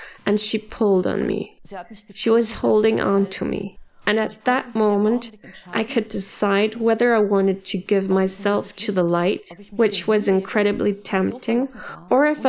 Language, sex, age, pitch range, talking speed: English, female, 20-39, 190-220 Hz, 160 wpm